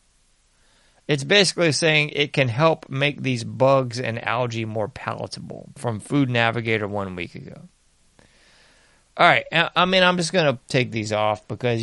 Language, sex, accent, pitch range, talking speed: English, male, American, 120-155 Hz, 155 wpm